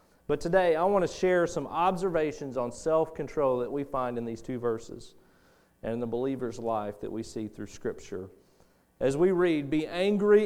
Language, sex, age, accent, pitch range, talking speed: English, male, 40-59, American, 125-175 Hz, 185 wpm